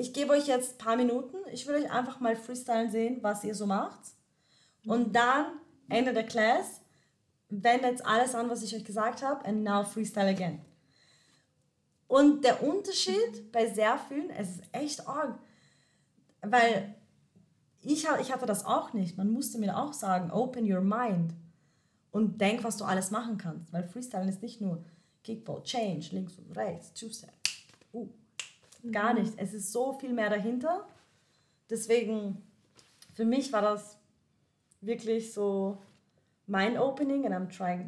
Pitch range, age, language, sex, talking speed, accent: 195-245 Hz, 20-39, English, female, 160 wpm, German